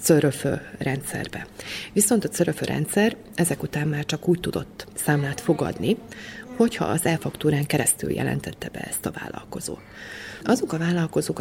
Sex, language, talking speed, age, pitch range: female, Hungarian, 135 wpm, 30-49, 145-180 Hz